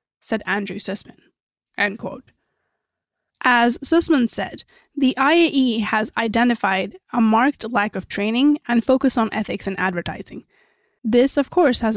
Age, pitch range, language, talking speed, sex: 20-39, 195-250 Hz, English, 135 wpm, female